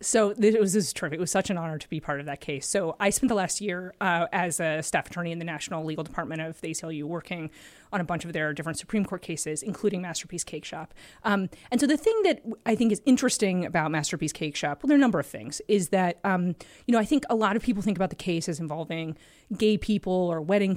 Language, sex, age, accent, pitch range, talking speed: English, female, 30-49, American, 165-205 Hz, 270 wpm